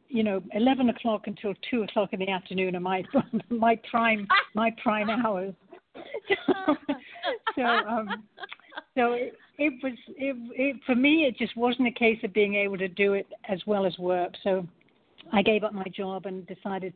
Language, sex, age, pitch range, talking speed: English, female, 60-79, 185-230 Hz, 175 wpm